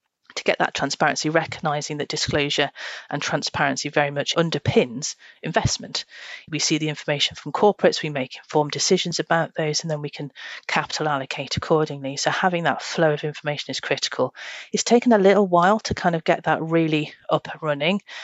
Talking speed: 180 wpm